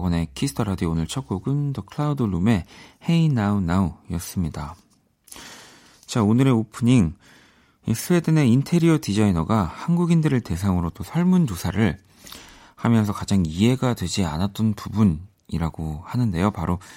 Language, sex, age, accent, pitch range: Korean, male, 40-59, native, 90-120 Hz